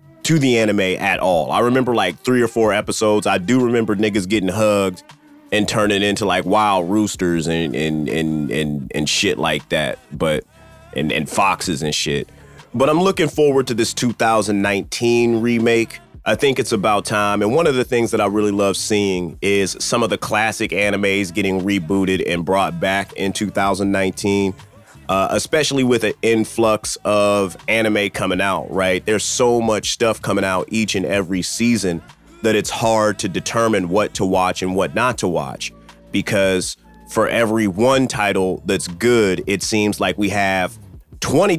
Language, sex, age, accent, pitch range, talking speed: English, male, 30-49, American, 95-115 Hz, 175 wpm